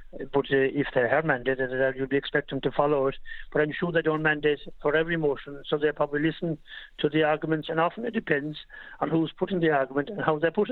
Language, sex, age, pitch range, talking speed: English, male, 60-79, 145-170 Hz, 235 wpm